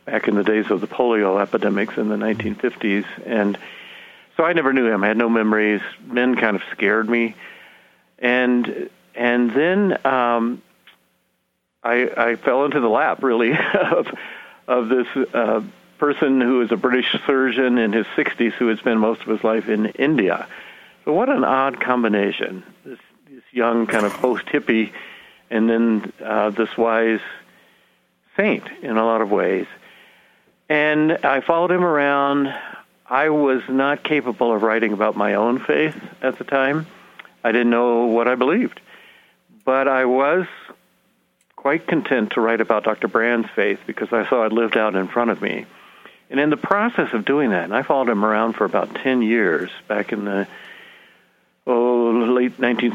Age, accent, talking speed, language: 50-69, American, 165 wpm, English